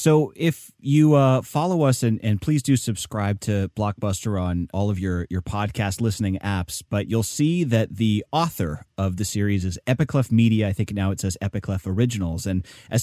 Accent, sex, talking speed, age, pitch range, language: American, male, 195 wpm, 30-49, 100-130 Hz, English